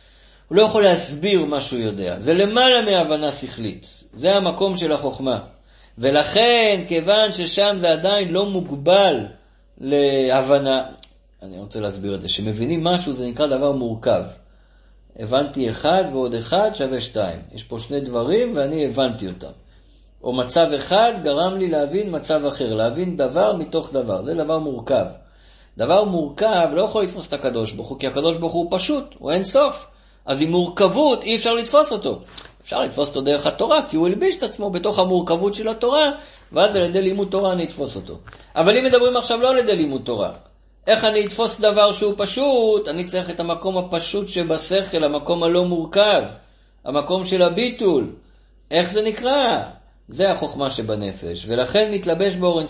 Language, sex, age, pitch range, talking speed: Hebrew, male, 50-69, 135-205 Hz, 165 wpm